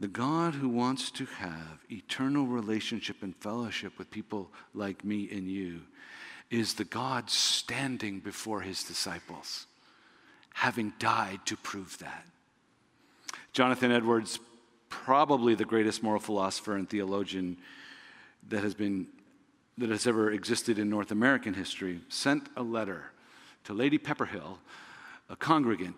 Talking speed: 130 wpm